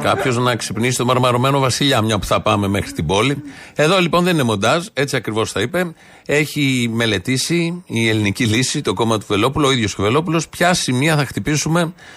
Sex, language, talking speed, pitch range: male, Greek, 190 wpm, 115-155 Hz